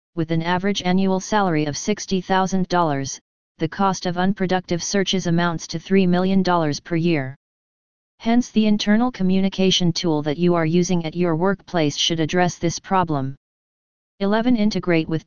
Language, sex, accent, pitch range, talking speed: English, female, American, 165-190 Hz, 145 wpm